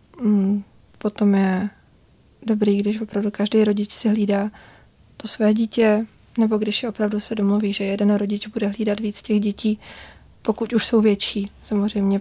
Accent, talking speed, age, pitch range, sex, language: native, 150 wpm, 20-39, 200-215 Hz, female, Czech